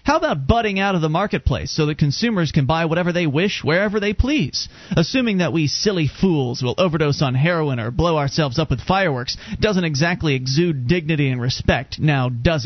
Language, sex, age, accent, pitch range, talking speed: English, male, 30-49, American, 135-190 Hz, 195 wpm